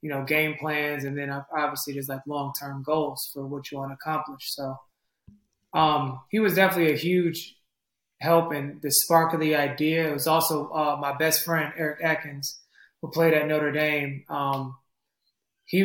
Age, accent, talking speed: 20-39, American, 180 wpm